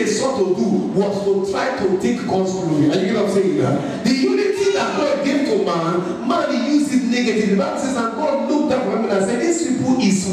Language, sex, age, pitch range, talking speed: English, male, 50-69, 205-300 Hz, 225 wpm